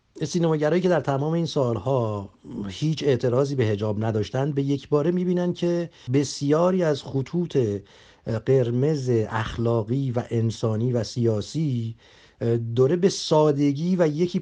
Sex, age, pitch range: male, 50-69, 110-145 Hz